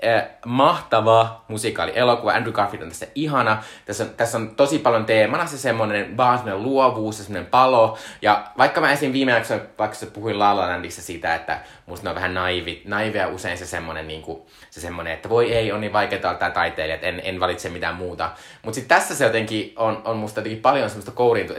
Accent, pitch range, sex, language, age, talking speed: native, 90-115 Hz, male, Finnish, 20-39, 200 wpm